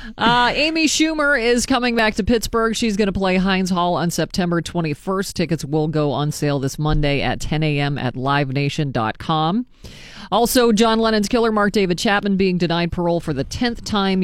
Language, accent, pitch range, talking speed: English, American, 150-190 Hz, 180 wpm